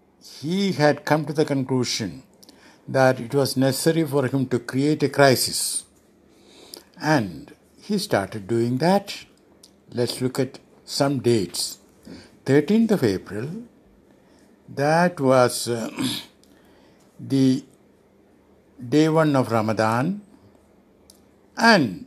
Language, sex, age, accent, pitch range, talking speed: English, male, 60-79, Indian, 120-160 Hz, 105 wpm